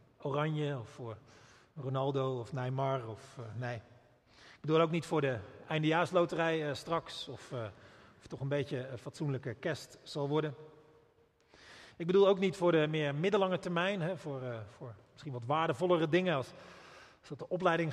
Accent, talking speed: Dutch, 170 wpm